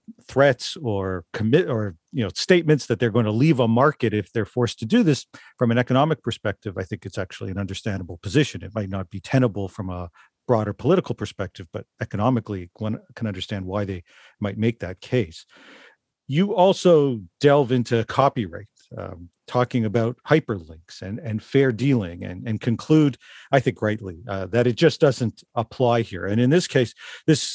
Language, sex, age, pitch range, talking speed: English, male, 50-69, 105-135 Hz, 180 wpm